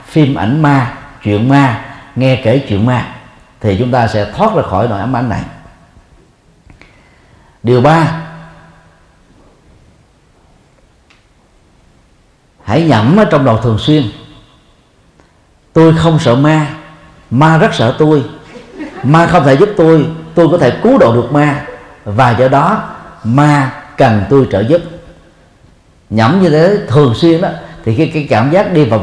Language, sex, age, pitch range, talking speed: Vietnamese, male, 50-69, 115-165 Hz, 140 wpm